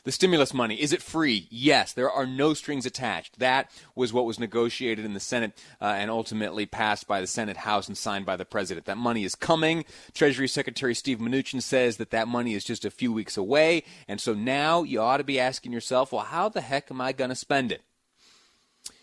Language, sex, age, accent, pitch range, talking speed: English, male, 30-49, American, 105-130 Hz, 220 wpm